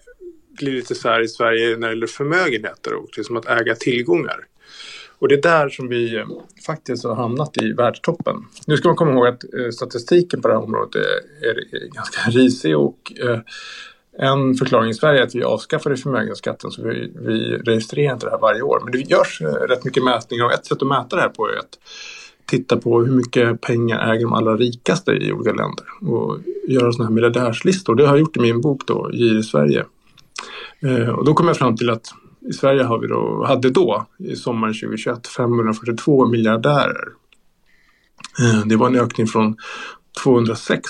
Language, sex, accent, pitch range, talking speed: English, male, Norwegian, 115-155 Hz, 190 wpm